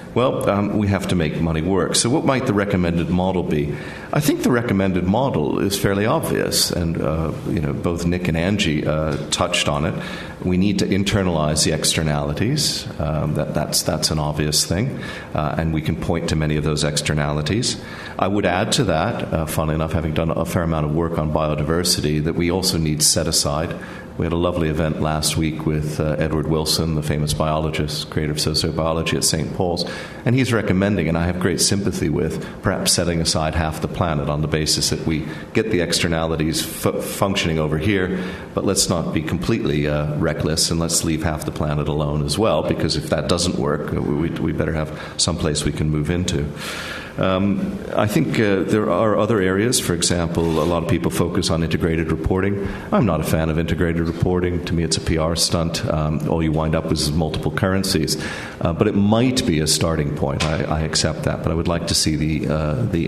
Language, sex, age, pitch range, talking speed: English, male, 50-69, 75-90 Hz, 205 wpm